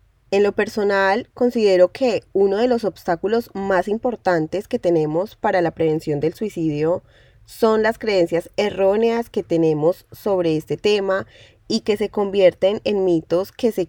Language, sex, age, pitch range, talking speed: Spanish, female, 10-29, 165-220 Hz, 150 wpm